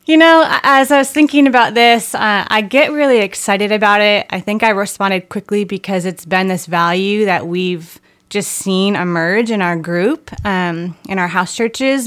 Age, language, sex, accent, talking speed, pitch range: 20-39, English, female, American, 190 wpm, 175-205 Hz